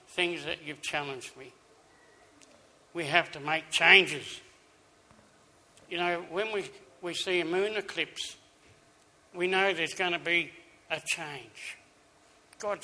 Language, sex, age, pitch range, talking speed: English, male, 60-79, 150-180 Hz, 130 wpm